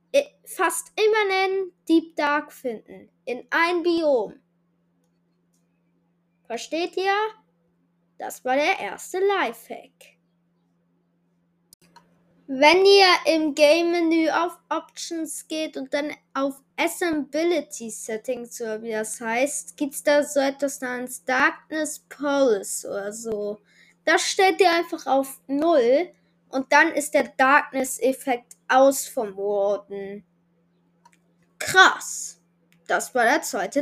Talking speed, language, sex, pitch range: 110 wpm, German, female, 205-335 Hz